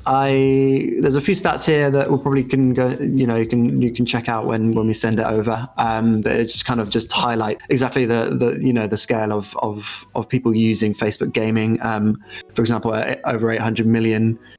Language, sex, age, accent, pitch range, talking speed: English, male, 20-39, British, 110-130 Hz, 220 wpm